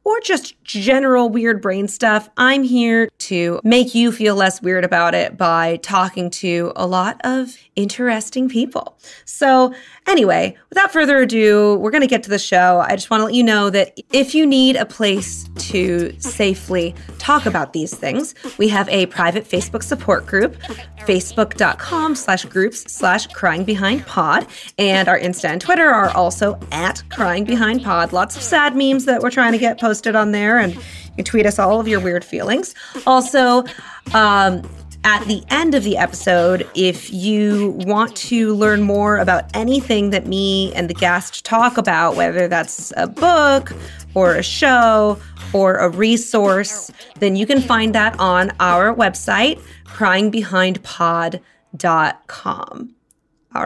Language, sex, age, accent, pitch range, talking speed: English, female, 30-49, American, 185-245 Hz, 160 wpm